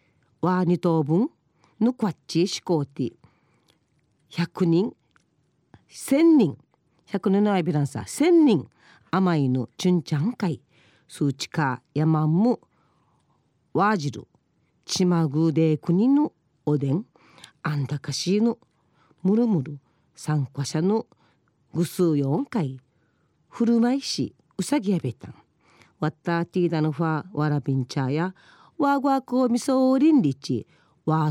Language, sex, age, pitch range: Japanese, female, 40-59, 145-230 Hz